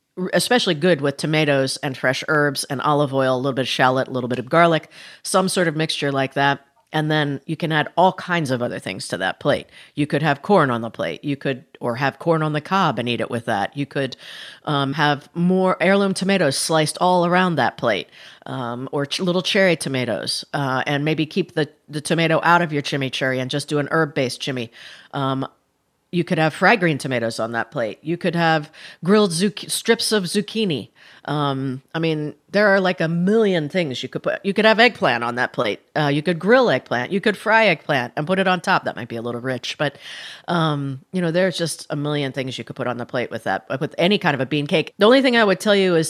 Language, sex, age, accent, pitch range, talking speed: English, female, 40-59, American, 135-180 Hz, 235 wpm